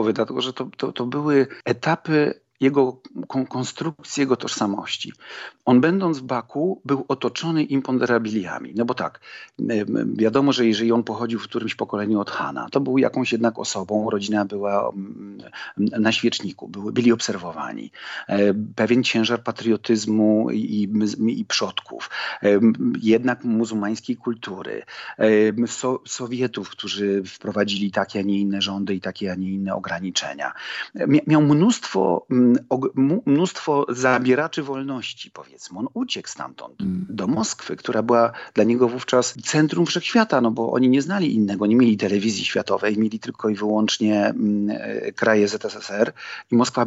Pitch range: 105-135 Hz